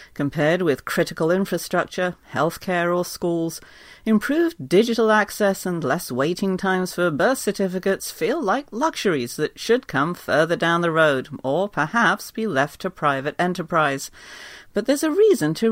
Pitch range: 145-215 Hz